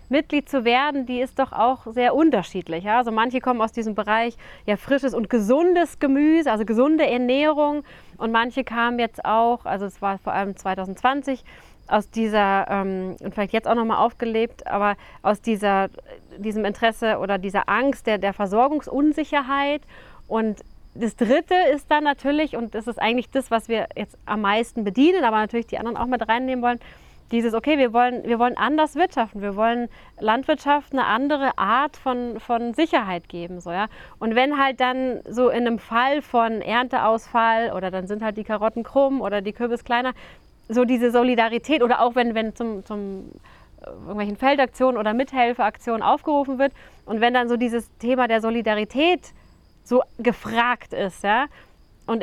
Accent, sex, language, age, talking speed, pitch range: German, female, German, 30-49, 165 wpm, 220-265 Hz